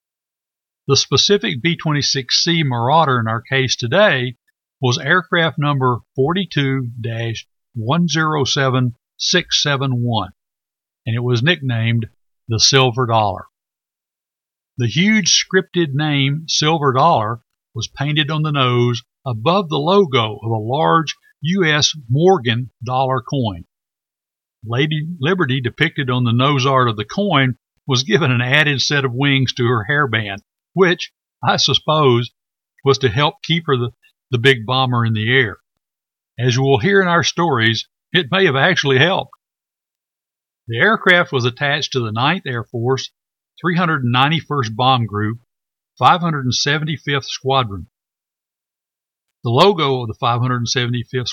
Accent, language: American, English